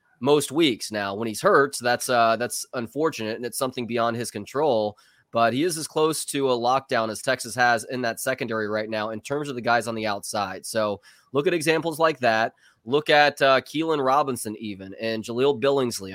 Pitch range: 110-135 Hz